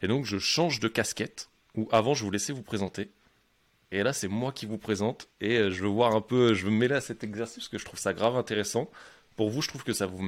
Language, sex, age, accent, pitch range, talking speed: French, male, 20-39, French, 100-115 Hz, 270 wpm